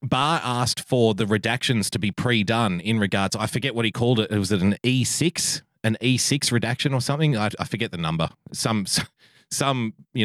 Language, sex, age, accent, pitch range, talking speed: English, male, 30-49, Australian, 100-130 Hz, 195 wpm